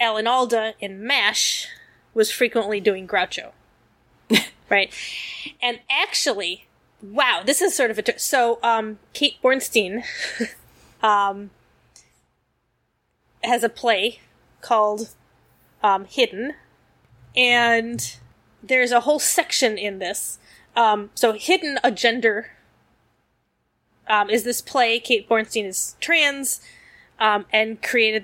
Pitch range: 215-255 Hz